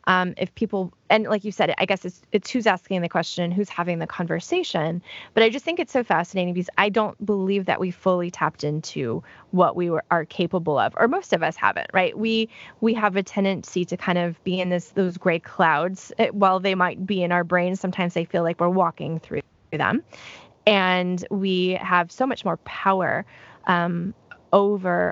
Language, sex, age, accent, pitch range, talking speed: English, female, 20-39, American, 170-200 Hz, 205 wpm